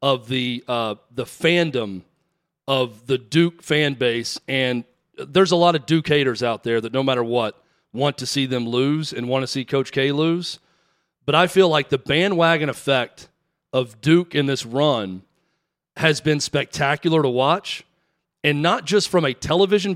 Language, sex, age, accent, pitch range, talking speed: English, male, 40-59, American, 135-165 Hz, 175 wpm